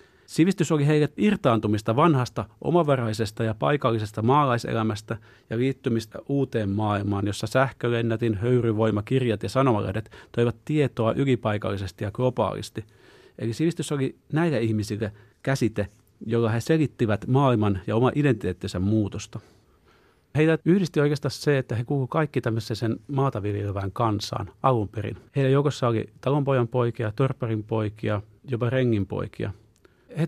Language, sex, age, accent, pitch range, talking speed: Finnish, male, 30-49, native, 110-135 Hz, 125 wpm